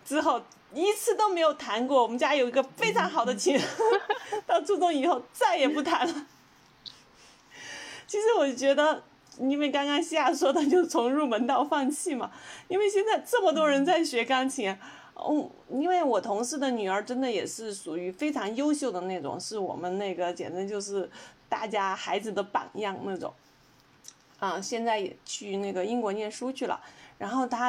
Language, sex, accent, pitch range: Chinese, female, native, 205-300 Hz